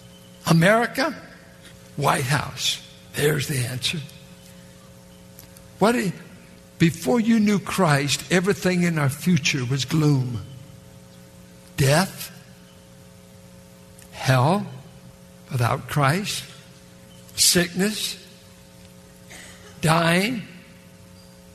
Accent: American